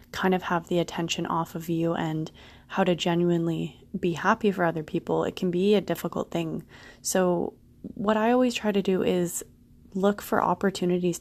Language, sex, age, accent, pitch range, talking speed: English, female, 20-39, American, 160-195 Hz, 180 wpm